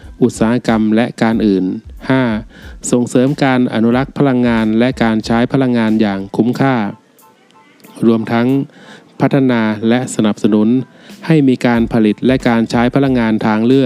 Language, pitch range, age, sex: Thai, 110-125 Hz, 20-39, male